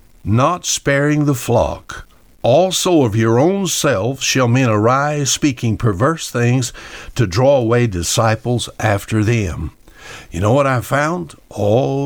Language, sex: English, male